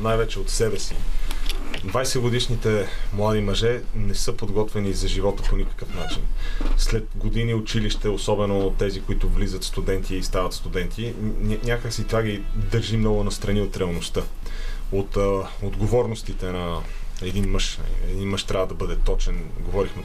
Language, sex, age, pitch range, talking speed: Bulgarian, male, 30-49, 95-105 Hz, 145 wpm